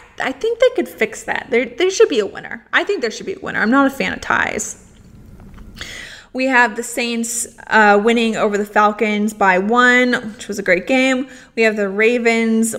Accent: American